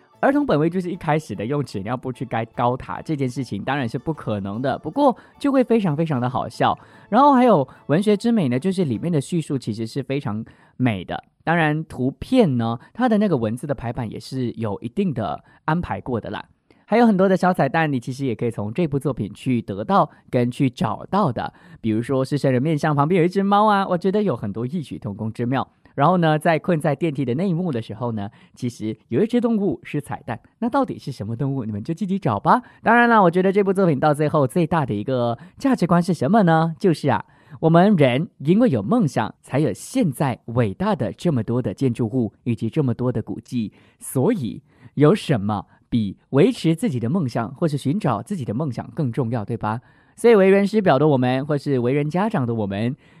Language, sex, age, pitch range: English, male, 20-39, 120-180 Hz